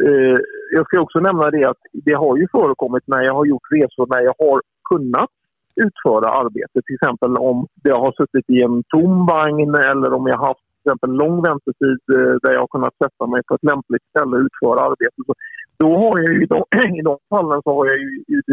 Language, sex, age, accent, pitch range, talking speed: English, male, 50-69, Norwegian, 130-215 Hz, 205 wpm